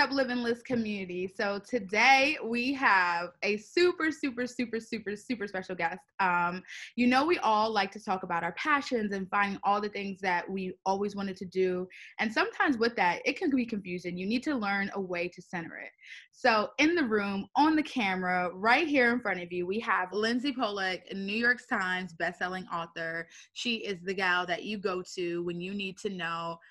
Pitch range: 180-235 Hz